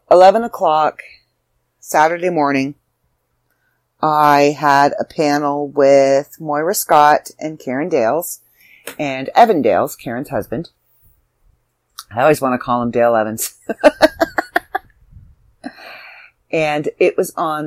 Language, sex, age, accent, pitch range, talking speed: English, female, 40-59, American, 130-180 Hz, 105 wpm